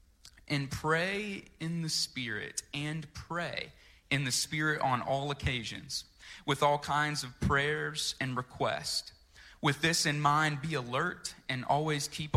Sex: male